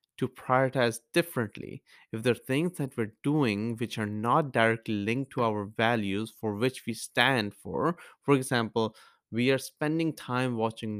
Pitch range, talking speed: 110-135 Hz, 165 wpm